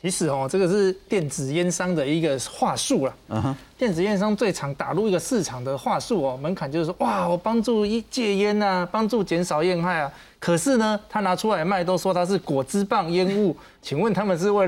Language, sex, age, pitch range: Chinese, male, 20-39, 160-215 Hz